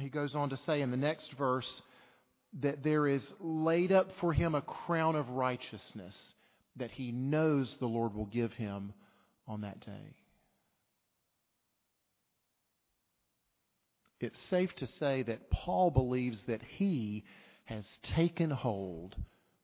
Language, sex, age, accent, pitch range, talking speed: English, male, 40-59, American, 125-170 Hz, 130 wpm